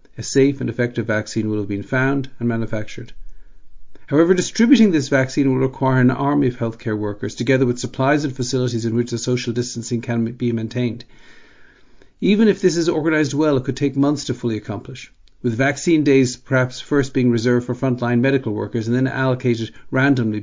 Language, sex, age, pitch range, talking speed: English, male, 50-69, 120-140 Hz, 185 wpm